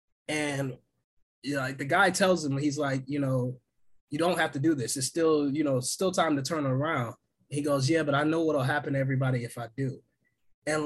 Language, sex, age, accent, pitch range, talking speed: English, male, 20-39, American, 135-160 Hz, 230 wpm